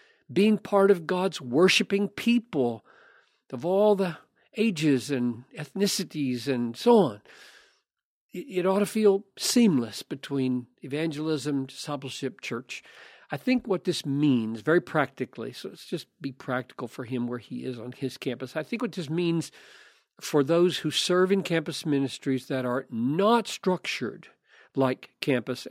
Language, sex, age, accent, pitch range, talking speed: English, male, 50-69, American, 130-195 Hz, 145 wpm